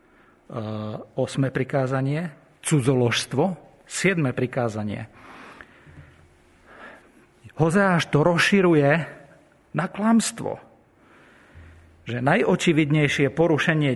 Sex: male